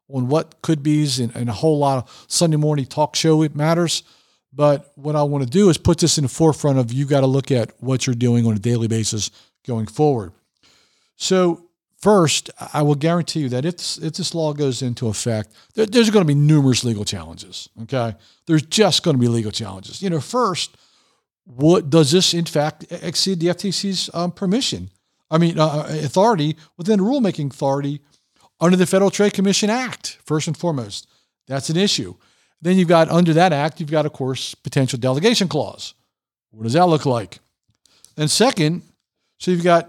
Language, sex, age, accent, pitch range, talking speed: English, male, 50-69, American, 130-170 Hz, 195 wpm